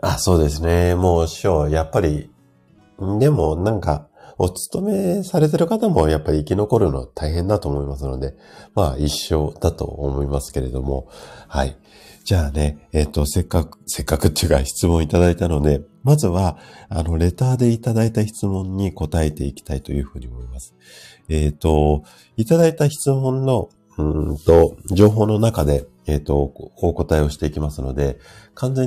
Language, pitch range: Japanese, 70-95 Hz